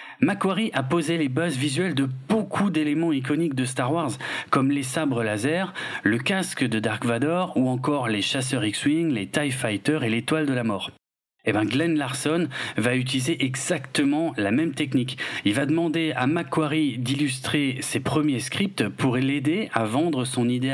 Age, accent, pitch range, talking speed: 40-59, French, 125-155 Hz, 175 wpm